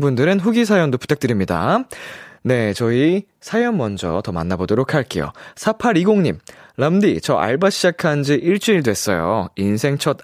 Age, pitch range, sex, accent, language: 20-39, 100-155 Hz, male, native, Korean